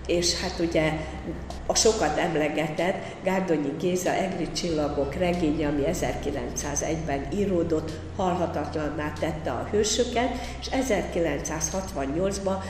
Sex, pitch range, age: female, 150-190 Hz, 50-69